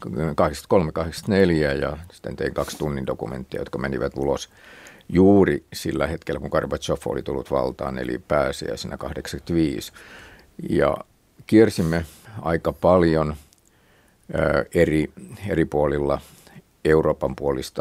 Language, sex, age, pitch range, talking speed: Finnish, male, 50-69, 75-95 Hz, 110 wpm